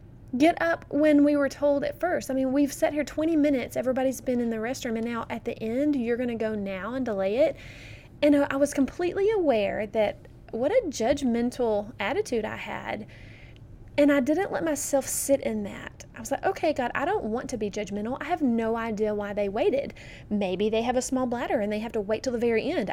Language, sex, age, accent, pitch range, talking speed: English, female, 20-39, American, 215-280 Hz, 225 wpm